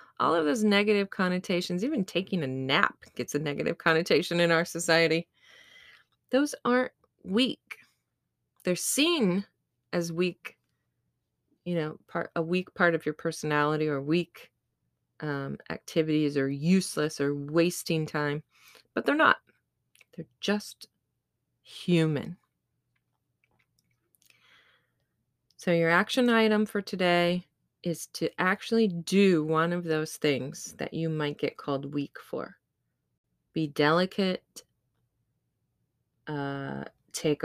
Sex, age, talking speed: female, 20-39, 115 wpm